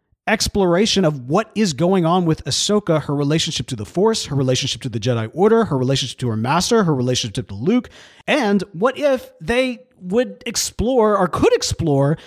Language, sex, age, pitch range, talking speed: English, male, 40-59, 145-230 Hz, 180 wpm